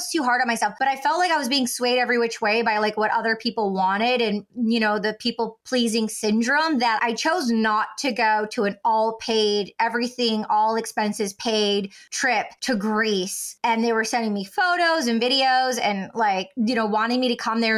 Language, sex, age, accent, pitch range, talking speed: English, female, 20-39, American, 220-265 Hz, 210 wpm